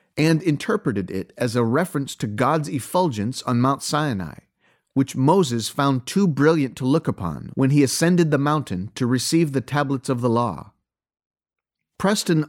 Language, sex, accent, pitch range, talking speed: English, male, American, 120-165 Hz, 160 wpm